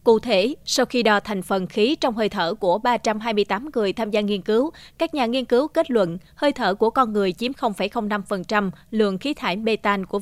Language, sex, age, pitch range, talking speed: Vietnamese, female, 20-39, 200-250 Hz, 210 wpm